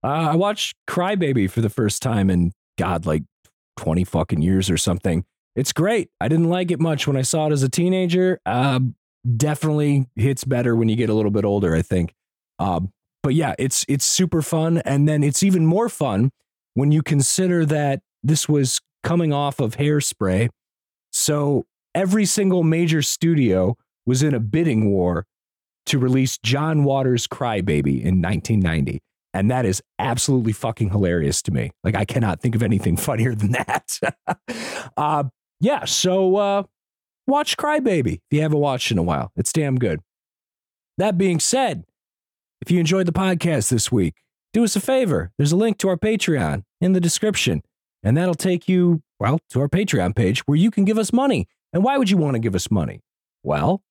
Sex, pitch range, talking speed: male, 110-180 Hz, 185 wpm